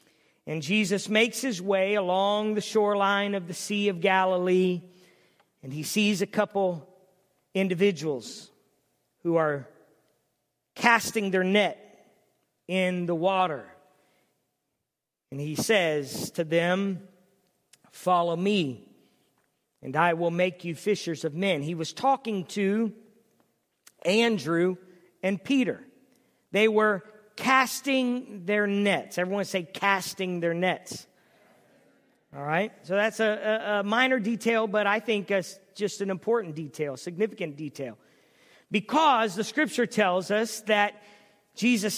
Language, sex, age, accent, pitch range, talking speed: English, male, 50-69, American, 180-215 Hz, 120 wpm